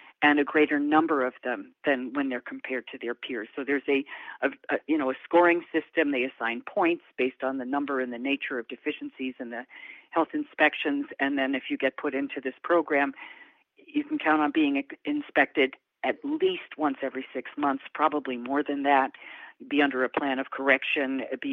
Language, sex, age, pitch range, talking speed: English, female, 50-69, 135-155 Hz, 200 wpm